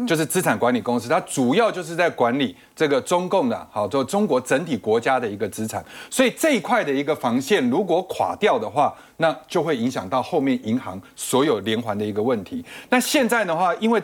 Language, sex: Chinese, male